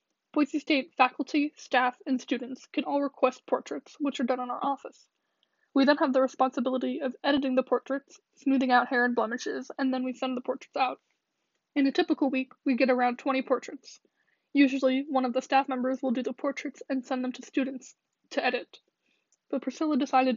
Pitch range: 255-280 Hz